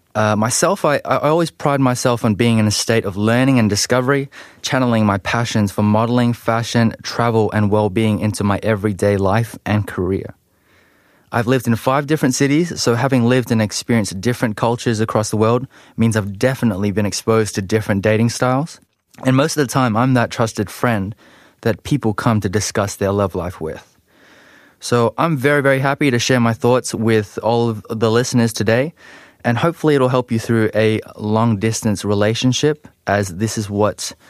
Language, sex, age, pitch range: Korean, male, 20-39, 105-125 Hz